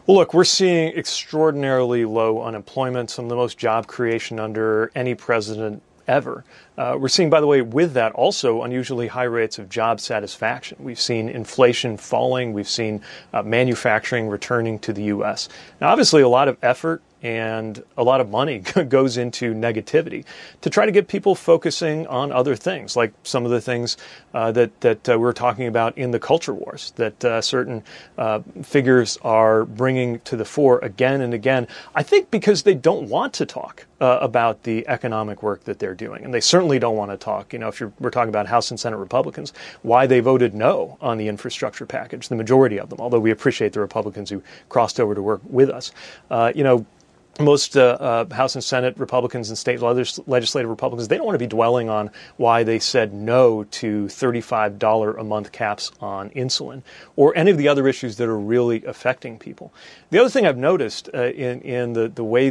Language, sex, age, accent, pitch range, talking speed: English, male, 30-49, American, 110-130 Hz, 200 wpm